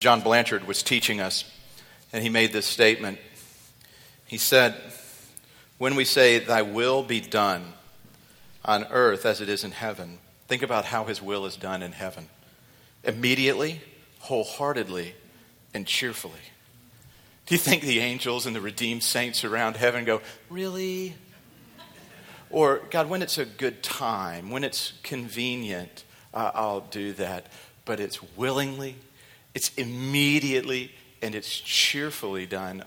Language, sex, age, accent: English, male, 40-59, American